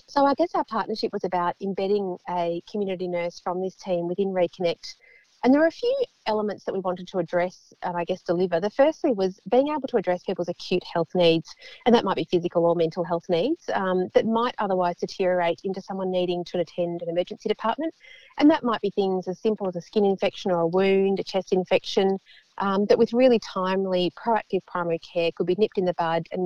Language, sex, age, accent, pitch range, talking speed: English, female, 40-59, Australian, 180-225 Hz, 220 wpm